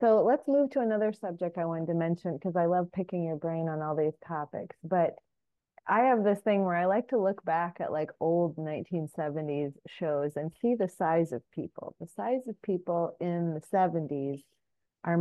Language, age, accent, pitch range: English, 30-49, American, 155-190 Hz